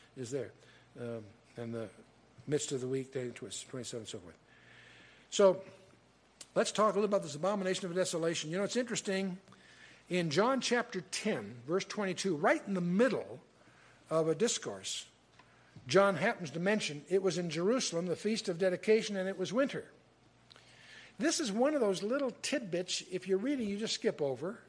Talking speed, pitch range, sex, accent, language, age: 175 wpm, 155-225 Hz, male, American, English, 60-79